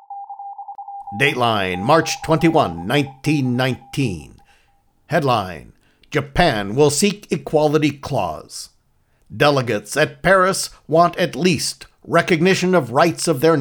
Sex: male